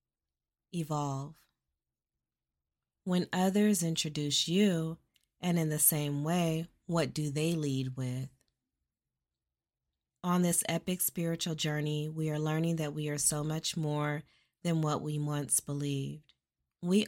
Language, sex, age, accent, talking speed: English, female, 20-39, American, 125 wpm